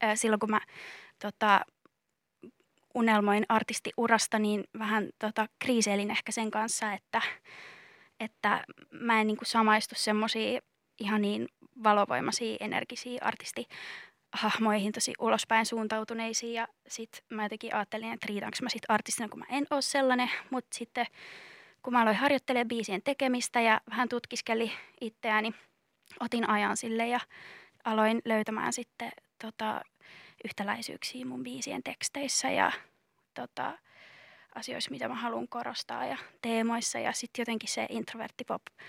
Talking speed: 125 wpm